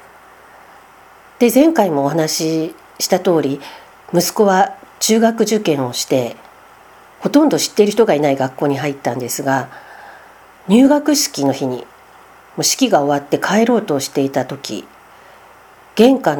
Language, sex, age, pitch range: Japanese, female, 50-69, 150-205 Hz